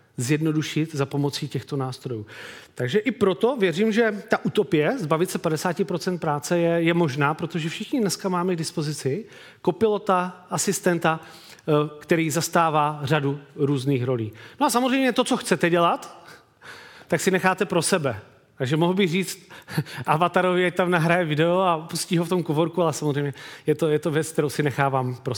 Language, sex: Czech, male